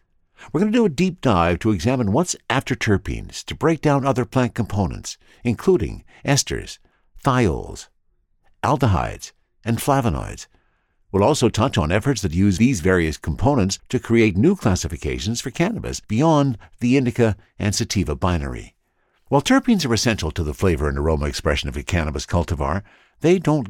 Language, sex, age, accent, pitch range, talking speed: English, male, 60-79, American, 90-140 Hz, 155 wpm